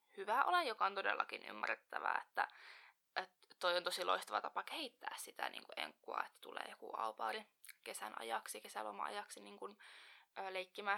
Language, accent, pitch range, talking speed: Finnish, native, 185-230 Hz, 155 wpm